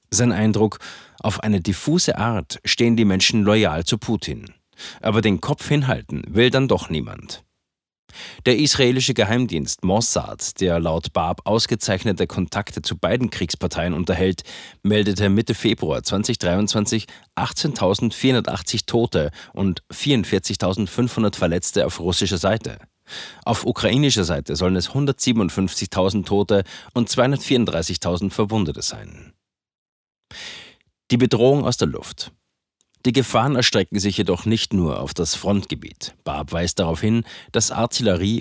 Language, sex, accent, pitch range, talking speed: German, male, German, 95-115 Hz, 120 wpm